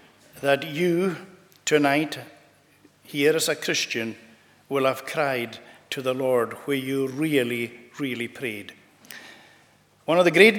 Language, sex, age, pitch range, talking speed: English, male, 60-79, 130-160 Hz, 125 wpm